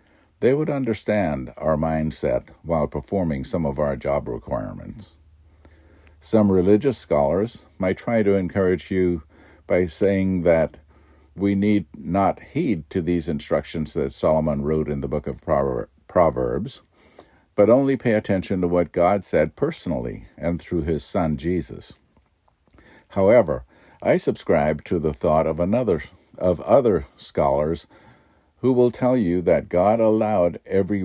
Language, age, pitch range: English, 60-79, 80-105 Hz